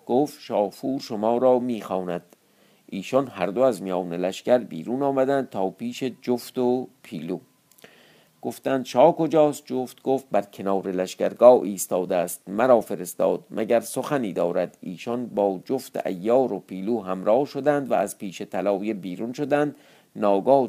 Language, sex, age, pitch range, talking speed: Persian, male, 50-69, 100-130 Hz, 140 wpm